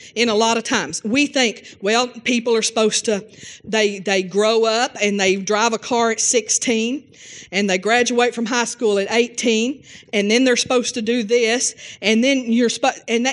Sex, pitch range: female, 225-285 Hz